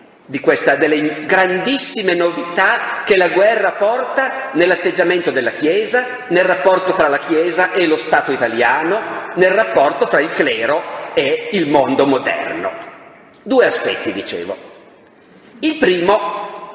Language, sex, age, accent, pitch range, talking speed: Italian, male, 50-69, native, 145-205 Hz, 125 wpm